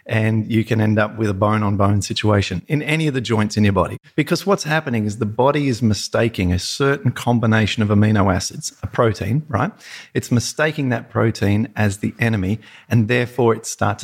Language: English